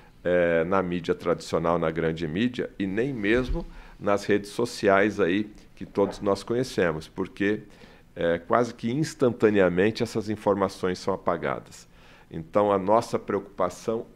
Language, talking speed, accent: Portuguese, 130 wpm, Brazilian